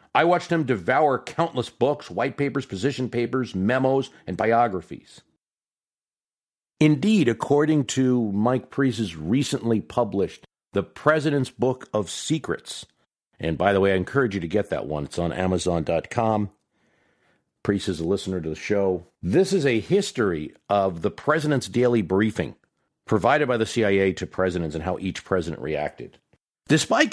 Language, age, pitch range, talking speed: English, 50-69, 100-140 Hz, 150 wpm